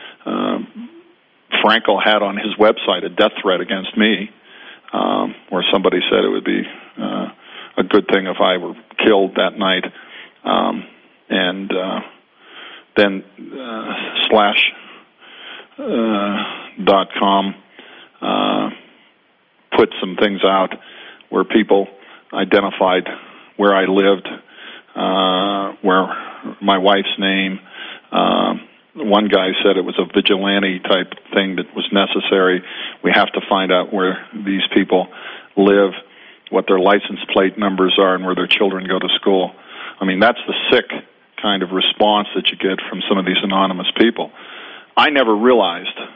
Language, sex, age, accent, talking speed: English, male, 40-59, American, 140 wpm